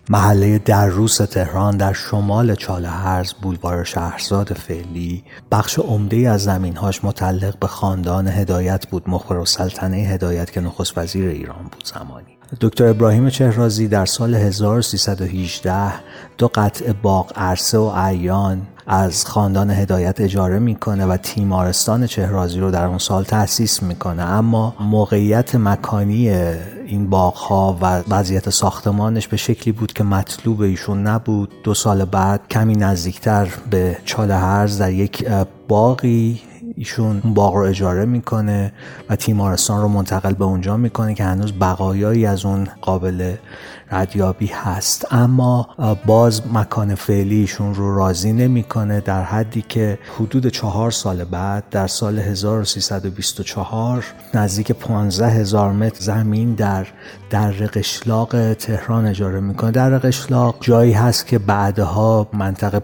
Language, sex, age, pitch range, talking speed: Persian, male, 30-49, 95-110 Hz, 130 wpm